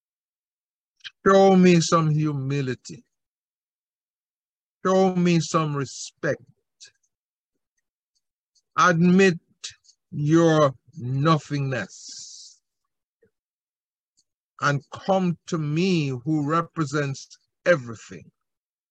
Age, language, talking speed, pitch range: 50-69, English, 55 wpm, 140-175 Hz